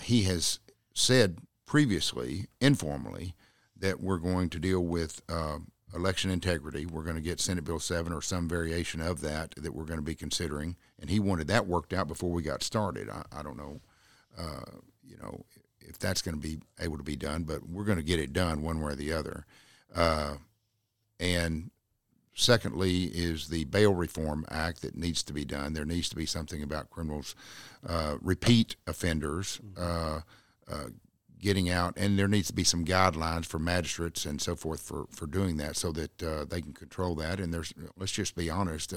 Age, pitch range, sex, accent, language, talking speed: 50-69, 80-95 Hz, male, American, English, 195 wpm